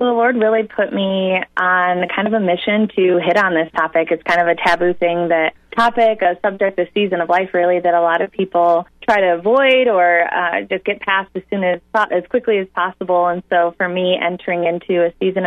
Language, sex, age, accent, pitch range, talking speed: English, female, 20-39, American, 170-195 Hz, 230 wpm